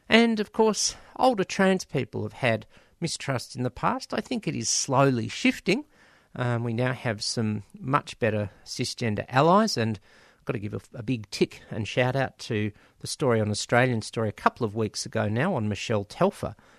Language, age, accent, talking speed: English, 50-69, Australian, 190 wpm